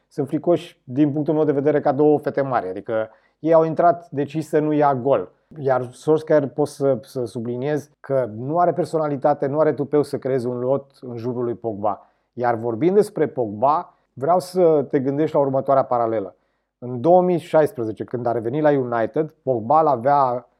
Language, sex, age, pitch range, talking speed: Romanian, male, 30-49, 125-155 Hz, 180 wpm